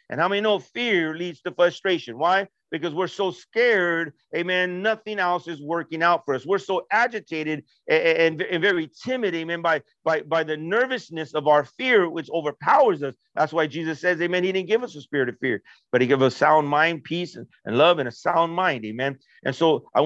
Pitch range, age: 140-180 Hz, 50-69